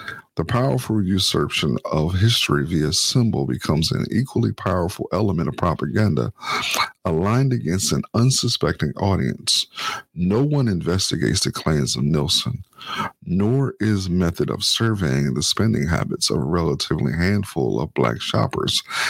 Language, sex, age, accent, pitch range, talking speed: English, male, 50-69, American, 85-120 Hz, 130 wpm